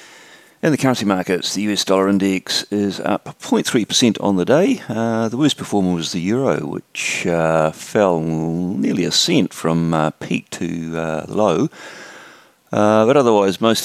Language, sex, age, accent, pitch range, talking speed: English, male, 40-59, British, 80-105 Hz, 160 wpm